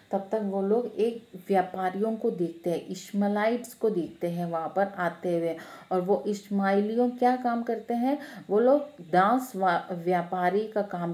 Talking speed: 165 wpm